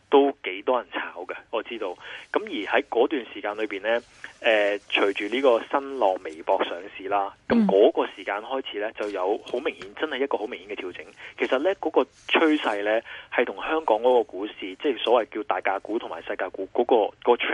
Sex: male